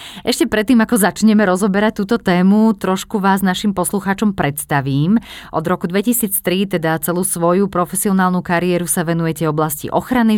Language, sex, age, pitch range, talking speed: Slovak, female, 30-49, 150-190 Hz, 140 wpm